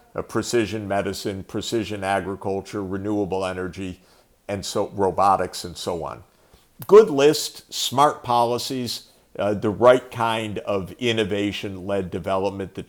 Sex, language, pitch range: male, English, 100-125 Hz